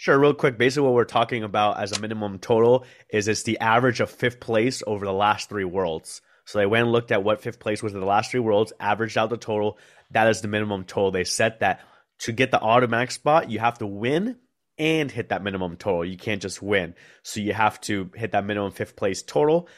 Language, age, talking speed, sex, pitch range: English, 30-49, 240 wpm, male, 95-115 Hz